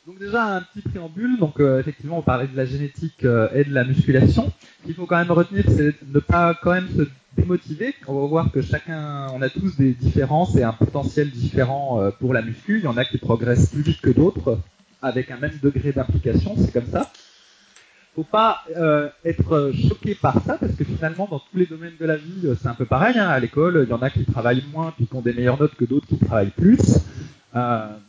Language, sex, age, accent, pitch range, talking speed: French, male, 30-49, French, 125-165 Hz, 240 wpm